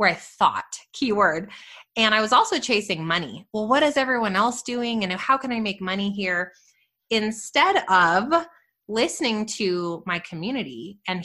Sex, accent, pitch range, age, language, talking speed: female, American, 185-245 Hz, 20-39, English, 160 wpm